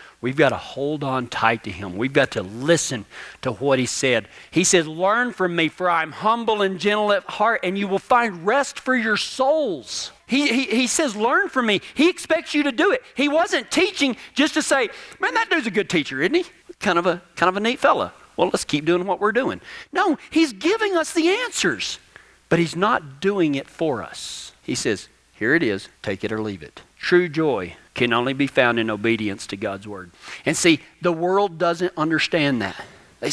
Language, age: English, 40-59